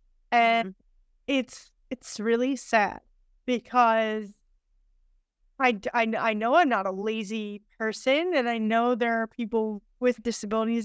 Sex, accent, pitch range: female, American, 225-275 Hz